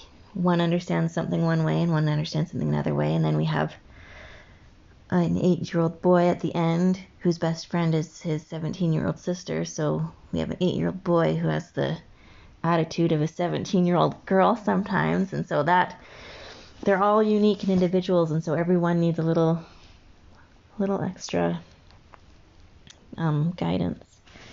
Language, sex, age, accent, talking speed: English, female, 30-49, American, 170 wpm